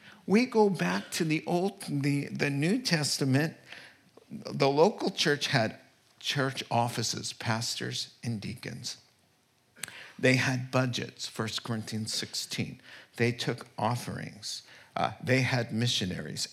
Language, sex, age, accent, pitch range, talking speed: English, male, 50-69, American, 120-170 Hz, 115 wpm